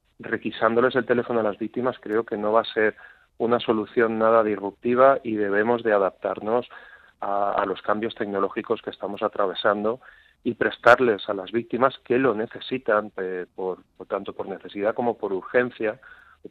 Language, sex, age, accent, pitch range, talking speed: Spanish, male, 40-59, Spanish, 95-115 Hz, 165 wpm